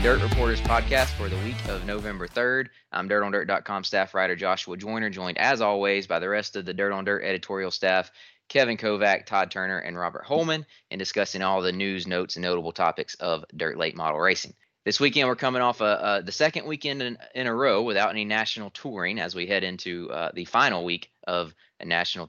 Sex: male